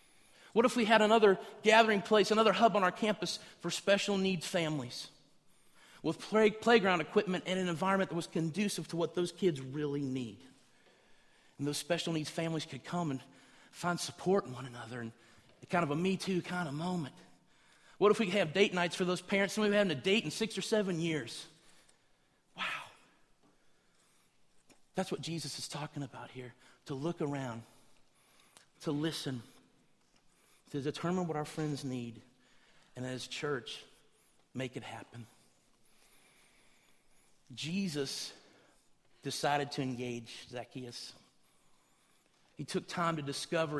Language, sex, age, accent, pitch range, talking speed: English, male, 40-59, American, 130-180 Hz, 150 wpm